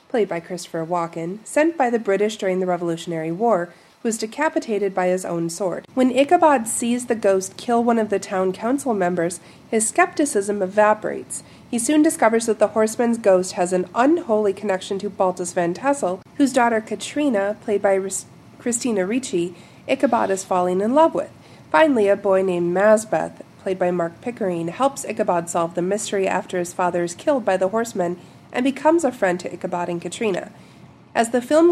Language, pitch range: English, 185-240 Hz